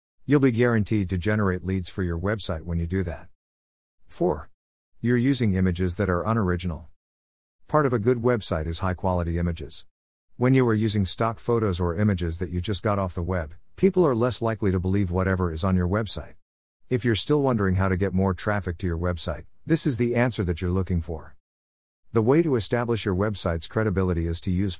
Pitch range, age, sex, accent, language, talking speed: 85-115 Hz, 50-69, male, American, English, 205 wpm